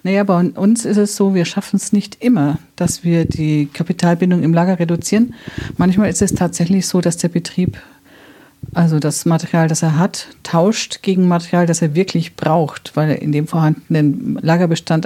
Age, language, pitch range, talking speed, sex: 50-69, German, 160-190 Hz, 175 wpm, female